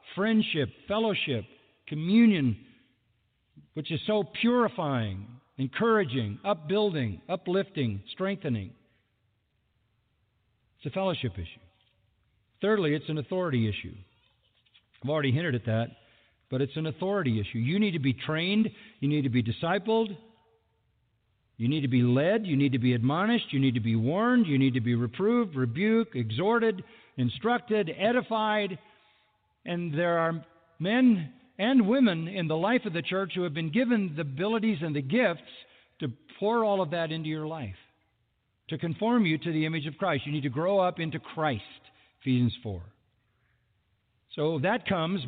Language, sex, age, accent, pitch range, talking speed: English, male, 50-69, American, 120-195 Hz, 150 wpm